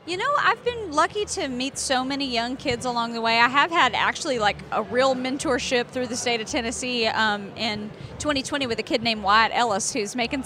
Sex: female